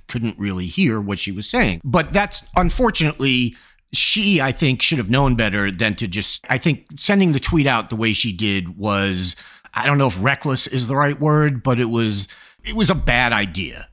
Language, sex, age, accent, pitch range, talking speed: English, male, 40-59, American, 95-135 Hz, 205 wpm